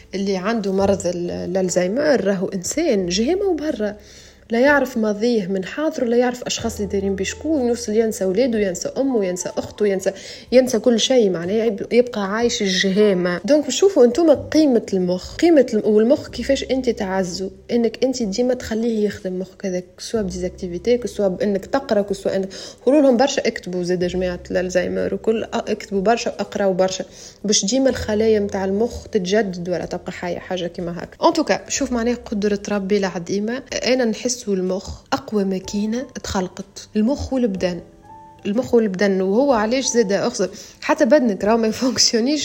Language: Arabic